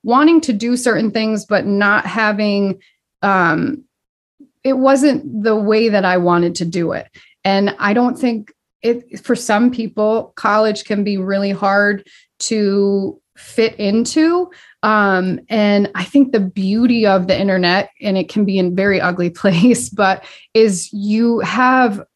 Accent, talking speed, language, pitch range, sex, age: American, 150 wpm, English, 190-225 Hz, female, 30-49